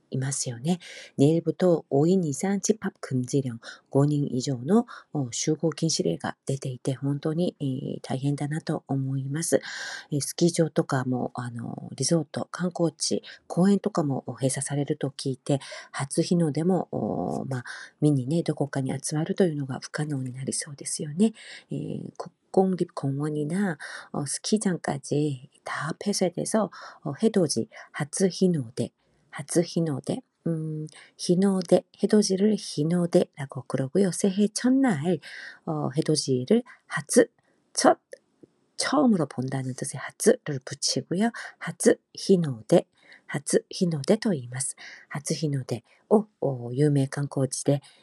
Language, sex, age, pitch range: Korean, female, 40-59, 140-185 Hz